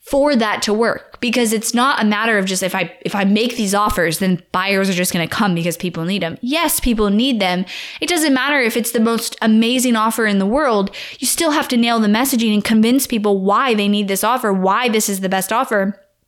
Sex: female